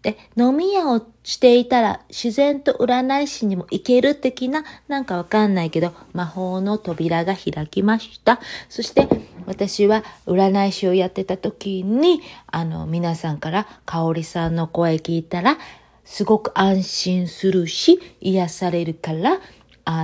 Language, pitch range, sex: Japanese, 165-235 Hz, female